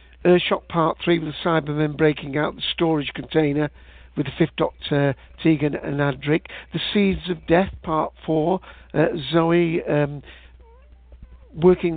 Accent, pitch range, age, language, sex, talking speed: British, 135-165 Hz, 60-79, English, male, 140 wpm